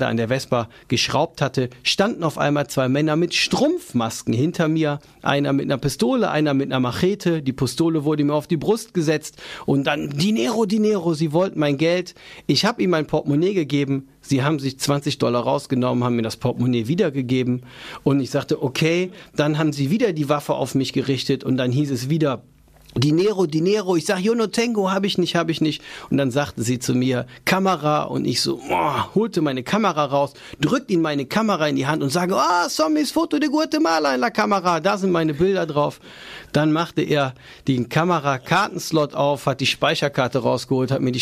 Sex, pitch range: male, 130-175 Hz